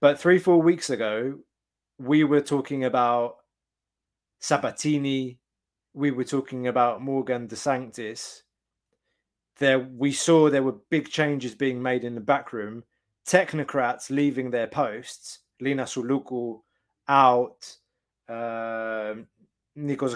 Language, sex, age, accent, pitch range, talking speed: English, male, 20-39, British, 110-145 Hz, 115 wpm